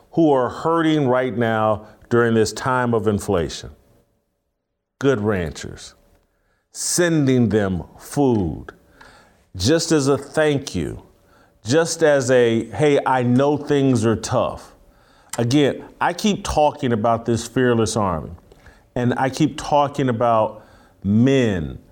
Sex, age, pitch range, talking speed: male, 40-59, 110-140 Hz, 120 wpm